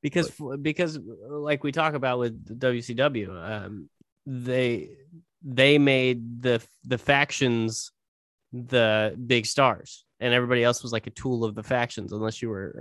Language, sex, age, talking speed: English, male, 20-39, 145 wpm